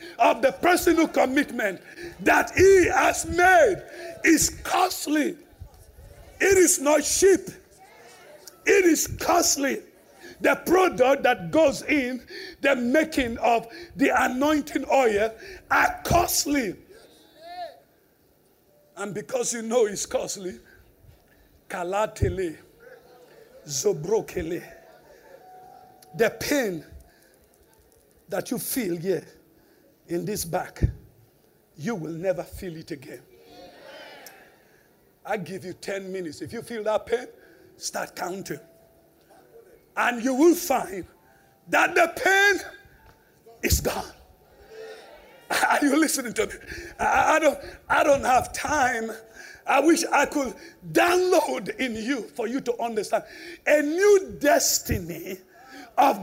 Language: English